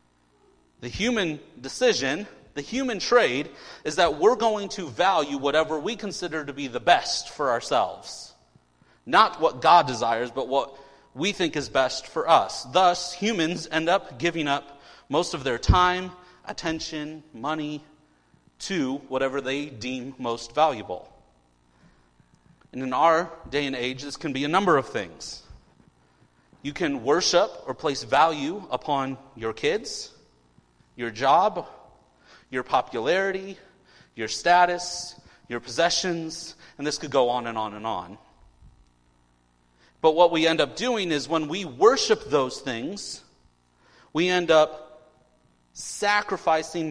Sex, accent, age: male, American, 30-49